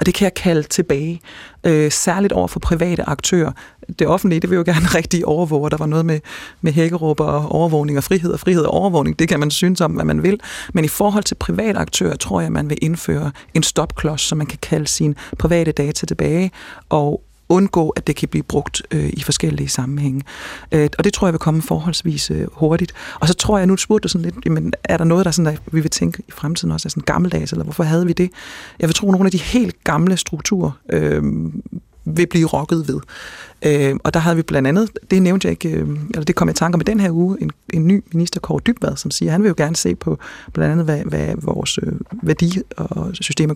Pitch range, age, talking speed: 150-180 Hz, 30-49, 240 wpm